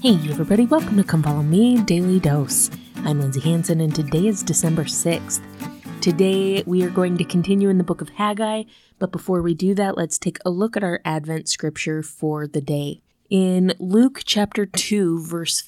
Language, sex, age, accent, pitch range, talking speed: English, female, 20-39, American, 160-195 Hz, 190 wpm